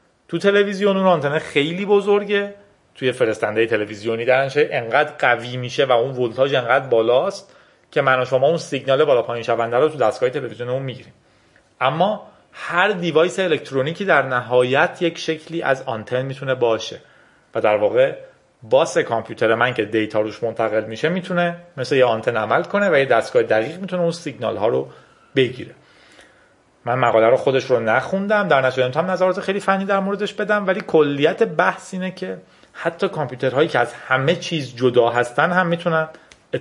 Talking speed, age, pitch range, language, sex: 165 wpm, 30-49, 125-185 Hz, Persian, male